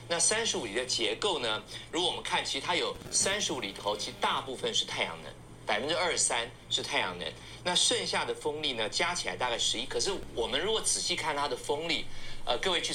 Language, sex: Chinese, male